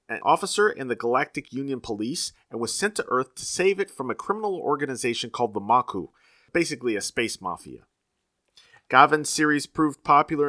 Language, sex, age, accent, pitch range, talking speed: English, male, 40-59, American, 120-160 Hz, 170 wpm